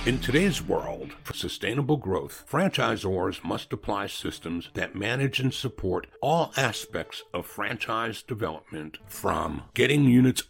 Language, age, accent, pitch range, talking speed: English, 60-79, American, 90-130 Hz, 125 wpm